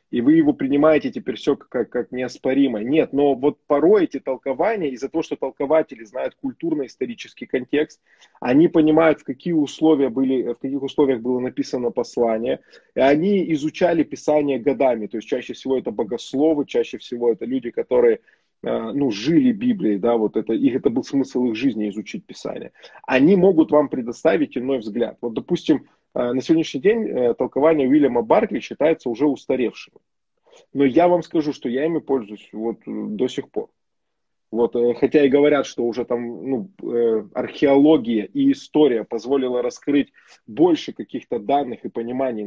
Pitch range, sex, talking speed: 125-160 Hz, male, 155 wpm